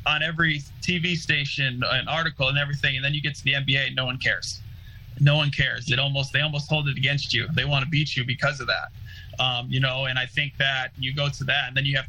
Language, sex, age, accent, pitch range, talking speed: English, male, 20-39, American, 125-145 Hz, 250 wpm